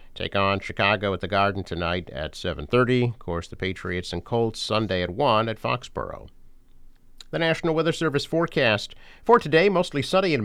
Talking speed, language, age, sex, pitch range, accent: 170 wpm, English, 50-69, male, 95-135 Hz, American